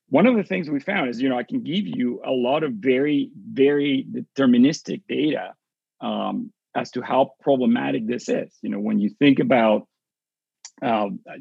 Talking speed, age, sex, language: 180 wpm, 40-59, male, English